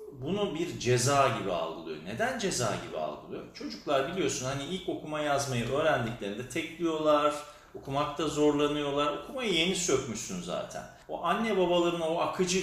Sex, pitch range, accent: male, 115-165 Hz, native